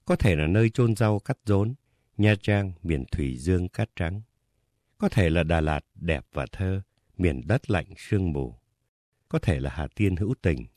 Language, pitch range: Vietnamese, 85-115 Hz